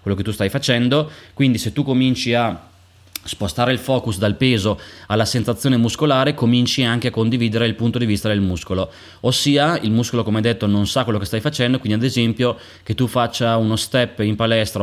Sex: male